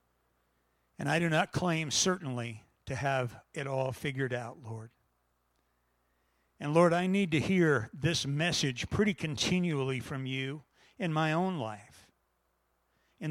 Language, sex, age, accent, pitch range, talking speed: English, male, 60-79, American, 115-175 Hz, 135 wpm